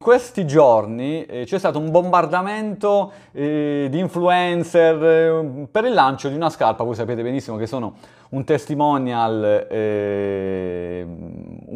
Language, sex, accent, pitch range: Italian, male, native, 115-170 Hz